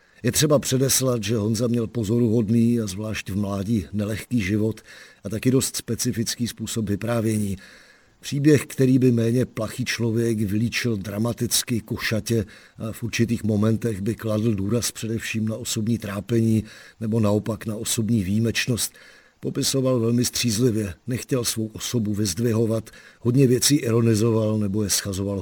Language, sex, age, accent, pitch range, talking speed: Czech, male, 50-69, native, 105-120 Hz, 135 wpm